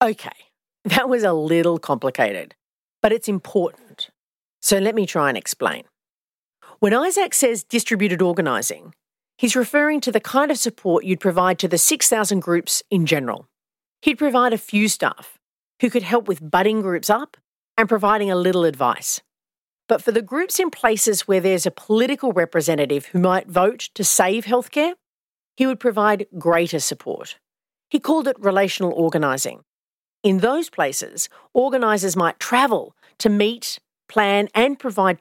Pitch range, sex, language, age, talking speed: 180-245 Hz, female, English, 40-59, 155 wpm